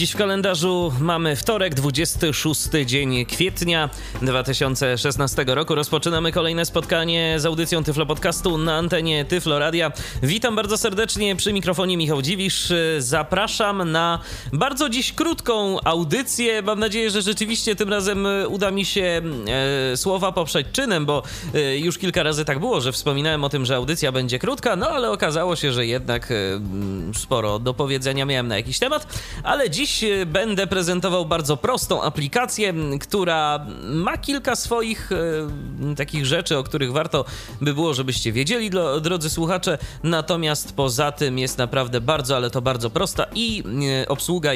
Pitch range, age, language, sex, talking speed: 135-185 Hz, 20-39, Polish, male, 145 wpm